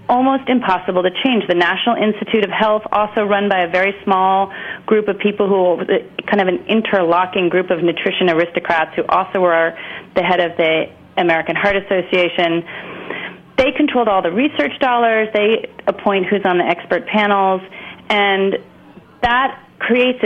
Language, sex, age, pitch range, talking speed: English, female, 30-49, 175-225 Hz, 160 wpm